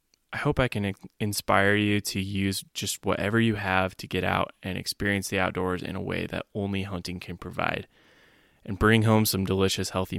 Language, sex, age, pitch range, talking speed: English, male, 10-29, 100-105 Hz, 195 wpm